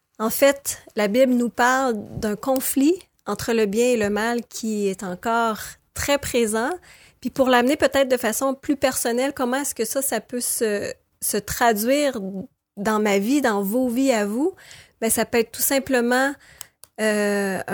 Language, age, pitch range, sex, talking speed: French, 30-49, 215-265 Hz, female, 175 wpm